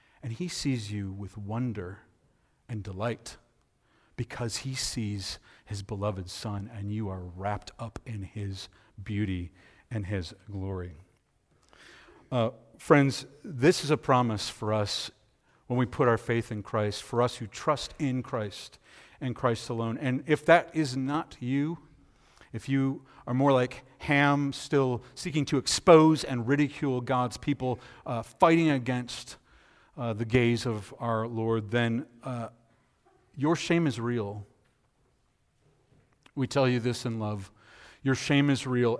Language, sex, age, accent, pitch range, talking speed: English, male, 50-69, American, 110-135 Hz, 145 wpm